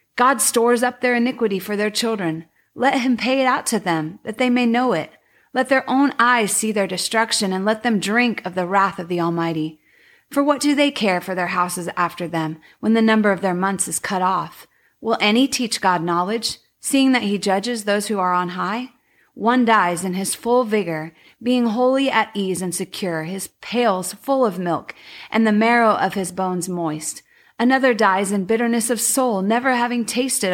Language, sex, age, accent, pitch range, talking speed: English, female, 30-49, American, 185-240 Hz, 200 wpm